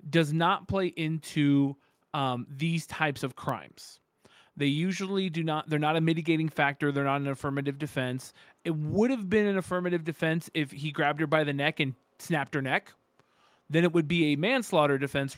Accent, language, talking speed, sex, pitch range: American, English, 185 wpm, male, 140-165 Hz